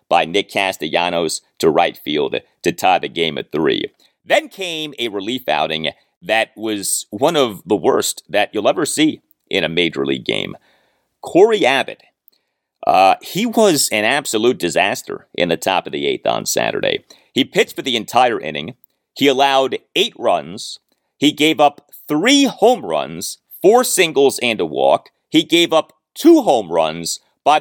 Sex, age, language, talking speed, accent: male, 40-59, English, 165 wpm, American